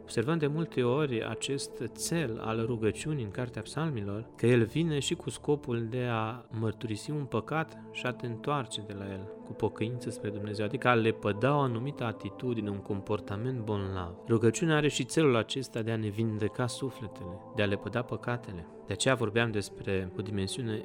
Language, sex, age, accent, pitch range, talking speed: Romanian, male, 30-49, native, 105-130 Hz, 185 wpm